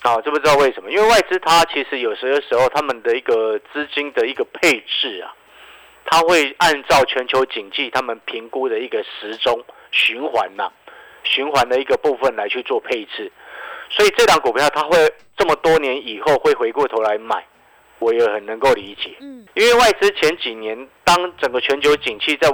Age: 50-69